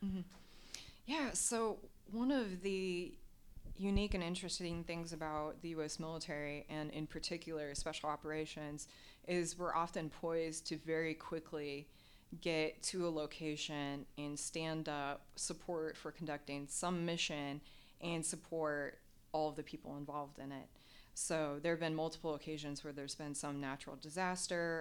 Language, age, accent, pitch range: English, 20-39, American, 145-165 Hz